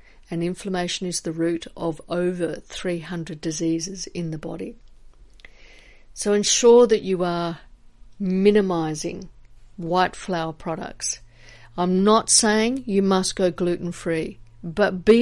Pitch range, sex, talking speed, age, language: 165-195 Hz, female, 120 wpm, 50-69, English